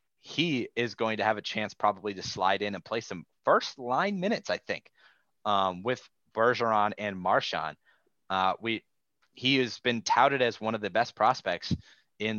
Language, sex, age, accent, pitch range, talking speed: English, male, 30-49, American, 105-130 Hz, 175 wpm